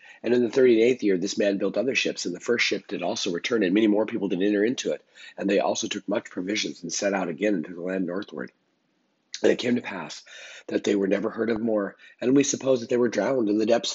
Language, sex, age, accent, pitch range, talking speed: English, male, 40-59, American, 95-110 Hz, 260 wpm